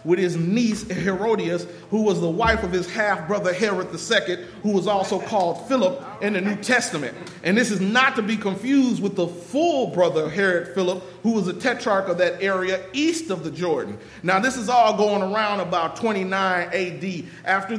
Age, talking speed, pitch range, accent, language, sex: 40-59, 190 wpm, 185-220 Hz, American, English, male